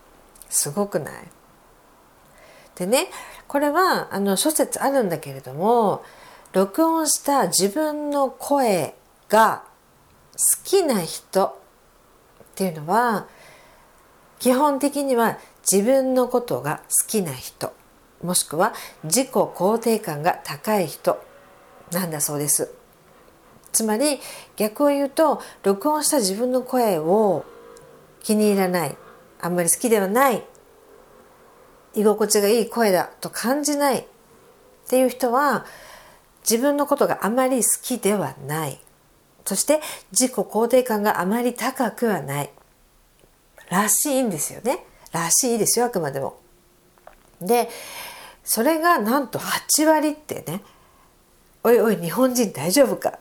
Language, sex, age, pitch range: Japanese, female, 50-69, 195-280 Hz